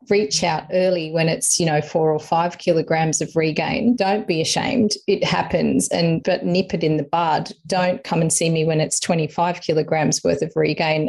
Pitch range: 160-185 Hz